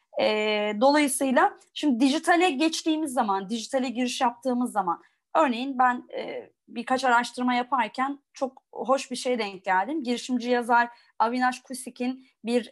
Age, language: 30-49, Turkish